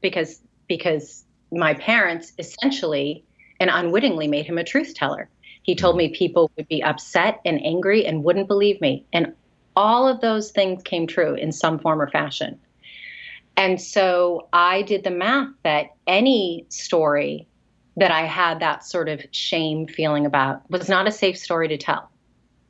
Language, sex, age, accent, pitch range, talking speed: English, female, 30-49, American, 155-200 Hz, 165 wpm